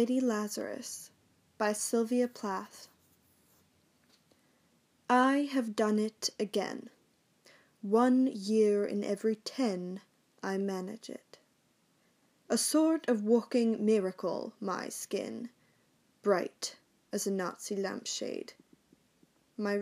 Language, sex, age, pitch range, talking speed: English, female, 10-29, 200-245 Hz, 95 wpm